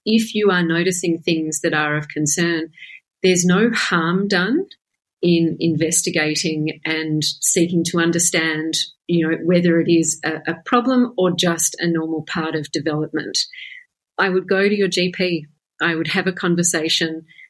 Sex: female